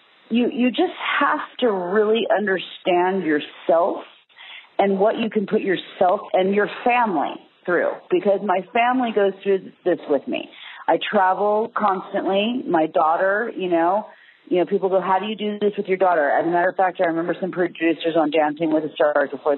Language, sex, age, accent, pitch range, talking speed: English, female, 40-59, American, 175-235 Hz, 185 wpm